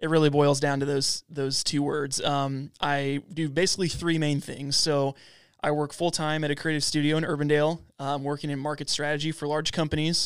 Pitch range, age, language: 140-155 Hz, 20-39, English